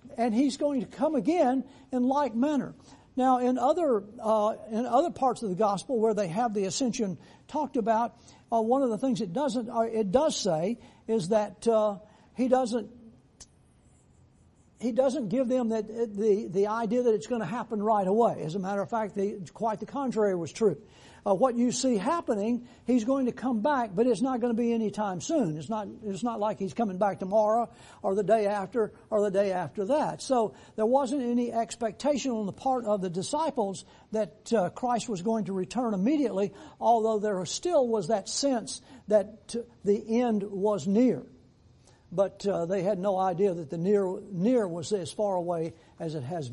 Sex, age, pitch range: male, 60-79, 205-245 Hz